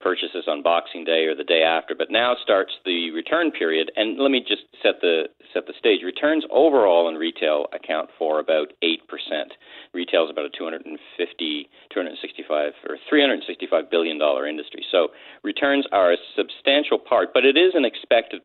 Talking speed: 205 wpm